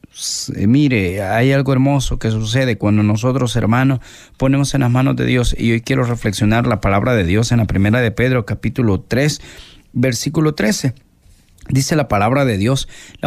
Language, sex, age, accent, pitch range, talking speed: Spanish, male, 40-59, Mexican, 110-150 Hz, 170 wpm